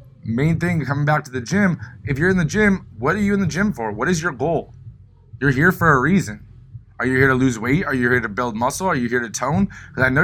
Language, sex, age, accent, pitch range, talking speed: English, male, 20-39, American, 115-150 Hz, 280 wpm